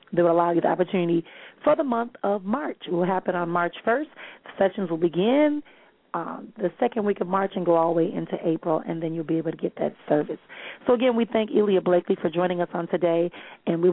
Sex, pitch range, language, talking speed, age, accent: female, 175-220 Hz, English, 240 wpm, 40-59, American